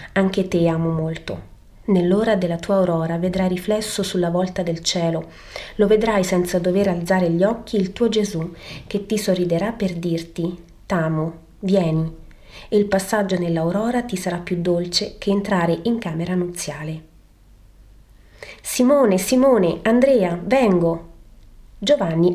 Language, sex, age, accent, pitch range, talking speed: Italian, female, 30-49, native, 170-215 Hz, 130 wpm